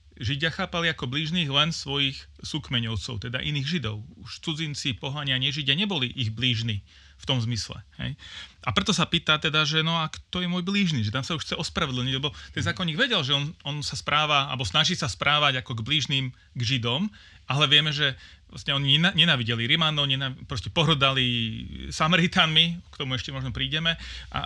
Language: Slovak